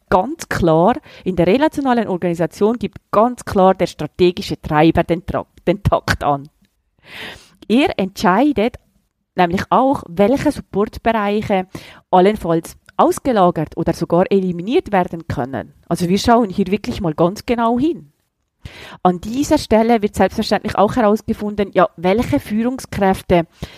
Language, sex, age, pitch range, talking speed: German, female, 30-49, 175-225 Hz, 125 wpm